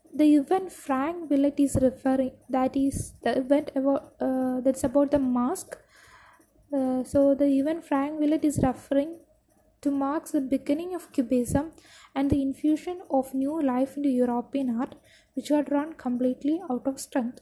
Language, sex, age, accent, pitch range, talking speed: English, female, 20-39, Indian, 260-305 Hz, 160 wpm